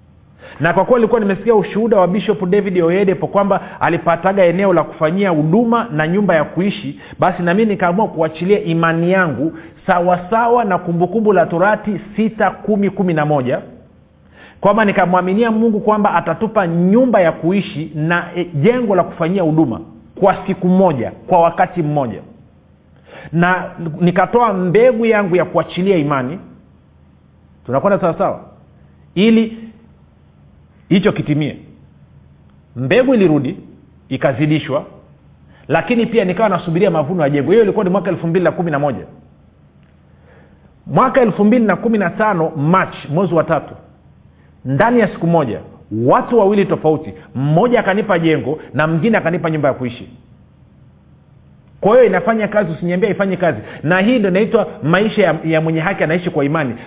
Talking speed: 135 wpm